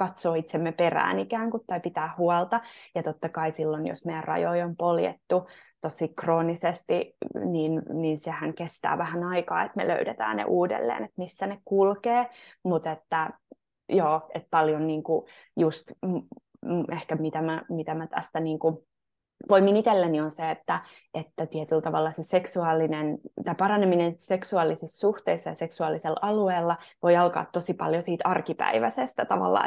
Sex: female